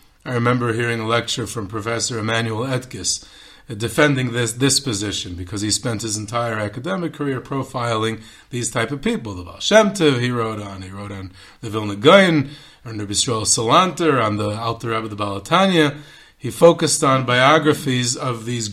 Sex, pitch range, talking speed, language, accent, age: male, 110-150 Hz, 175 wpm, English, American, 40-59